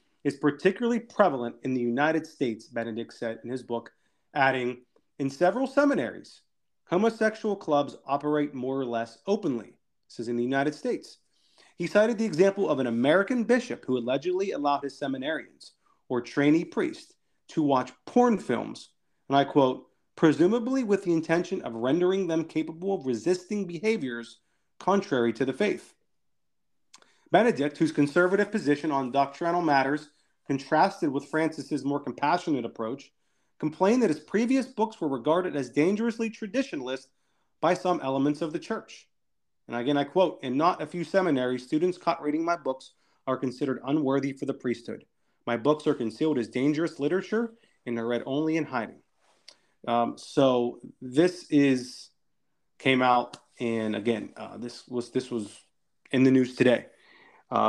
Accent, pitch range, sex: American, 125-180 Hz, male